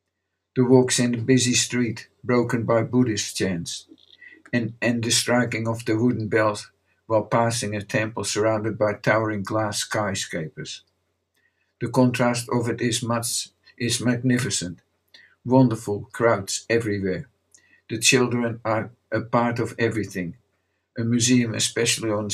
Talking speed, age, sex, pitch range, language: 130 wpm, 50-69, male, 110-125 Hz, English